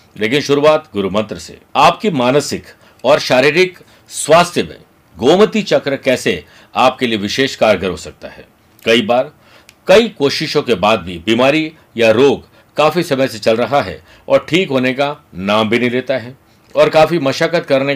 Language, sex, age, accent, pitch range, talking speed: Hindi, male, 50-69, native, 115-150 Hz, 165 wpm